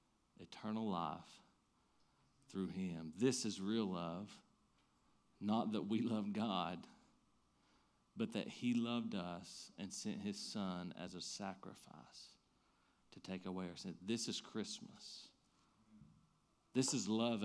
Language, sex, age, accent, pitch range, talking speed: English, male, 40-59, American, 100-150 Hz, 125 wpm